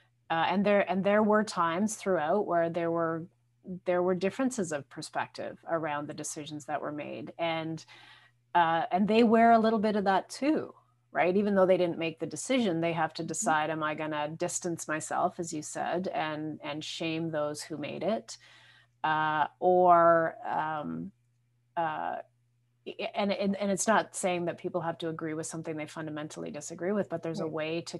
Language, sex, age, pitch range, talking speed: English, female, 30-49, 155-180 Hz, 180 wpm